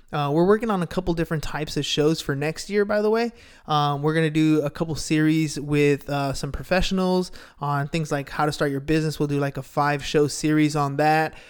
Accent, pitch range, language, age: American, 145-165 Hz, English, 20-39